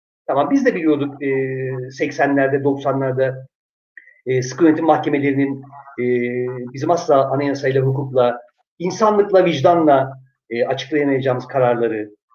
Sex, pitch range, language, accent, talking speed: male, 135-180 Hz, Turkish, native, 85 wpm